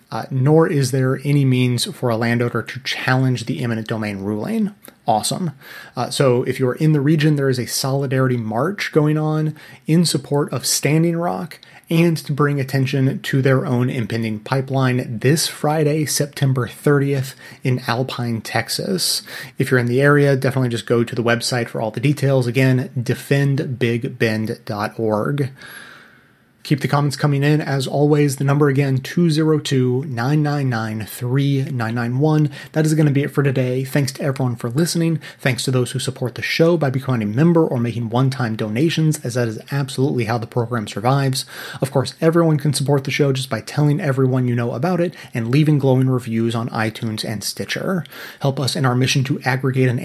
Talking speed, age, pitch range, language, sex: 175 wpm, 30-49, 125-145 Hz, English, male